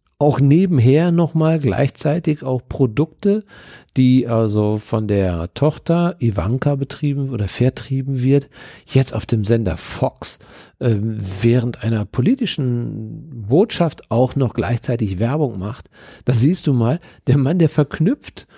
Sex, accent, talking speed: male, German, 125 wpm